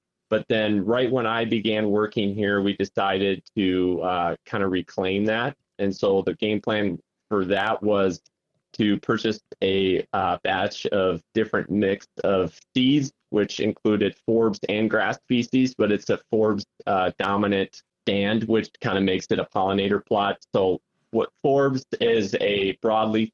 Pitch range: 100-125 Hz